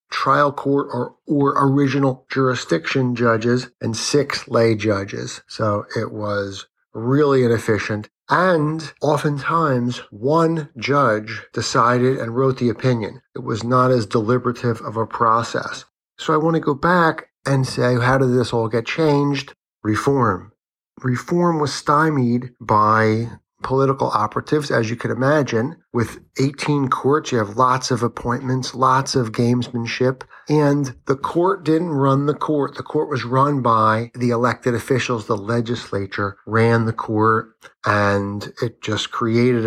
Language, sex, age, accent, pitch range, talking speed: English, male, 50-69, American, 110-135 Hz, 140 wpm